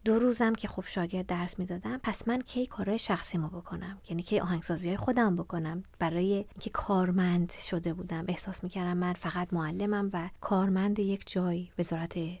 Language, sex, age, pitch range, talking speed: Persian, female, 20-39, 180-225 Hz, 165 wpm